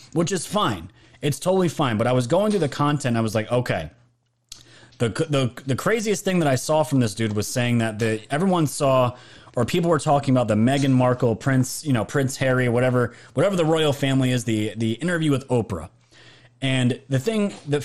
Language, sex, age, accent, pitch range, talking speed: English, male, 30-49, American, 120-160 Hz, 210 wpm